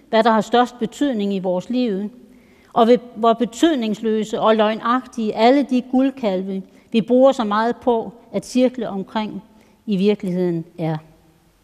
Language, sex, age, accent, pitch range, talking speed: Danish, female, 60-79, native, 205-250 Hz, 140 wpm